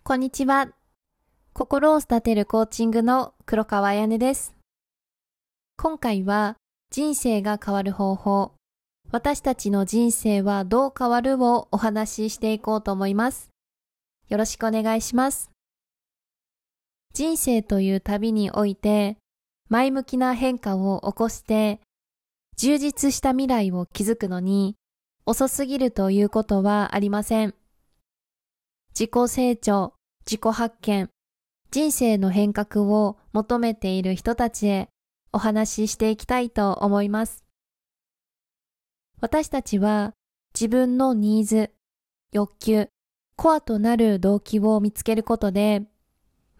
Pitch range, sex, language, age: 205-245 Hz, female, Japanese, 20-39